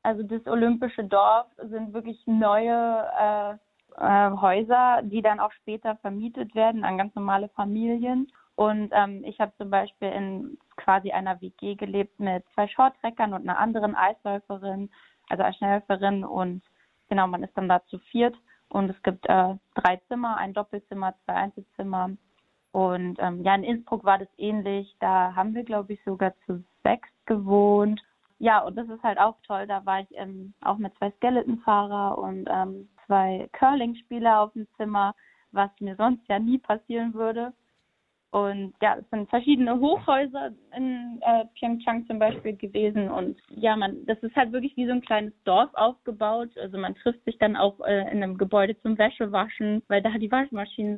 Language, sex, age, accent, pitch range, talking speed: German, female, 20-39, German, 195-230 Hz, 170 wpm